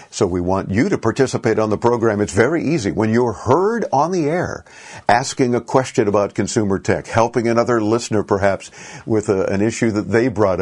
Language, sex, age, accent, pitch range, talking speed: English, male, 50-69, American, 100-125 Hz, 190 wpm